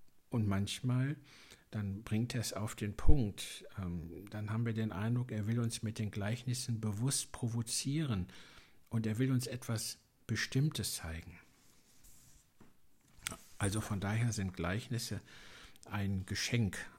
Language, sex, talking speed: German, male, 130 wpm